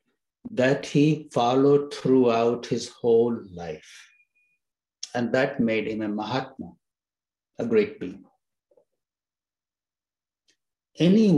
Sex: male